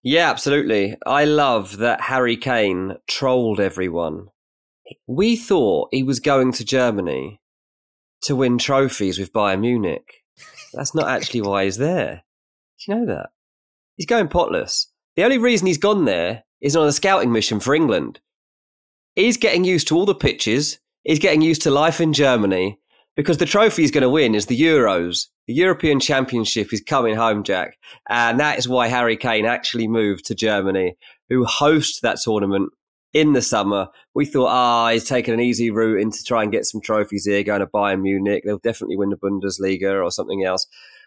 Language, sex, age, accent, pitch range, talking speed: English, male, 30-49, British, 100-140 Hz, 180 wpm